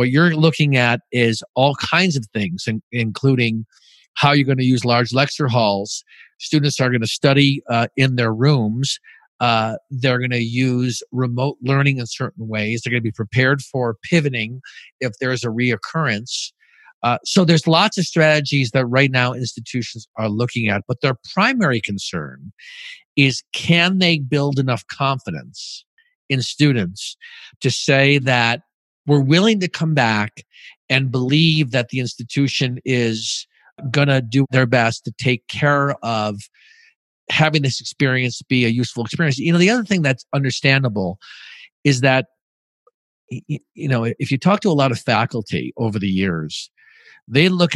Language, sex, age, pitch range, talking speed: English, male, 50-69, 120-145 Hz, 160 wpm